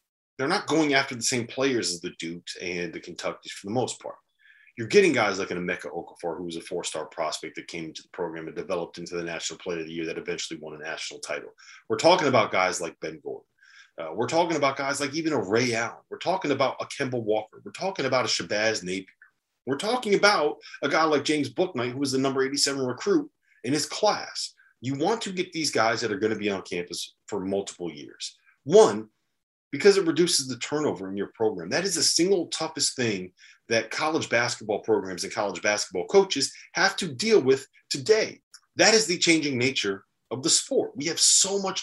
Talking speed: 215 wpm